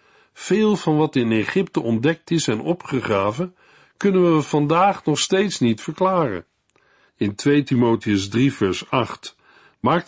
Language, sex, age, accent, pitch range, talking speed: Dutch, male, 50-69, Dutch, 125-175 Hz, 135 wpm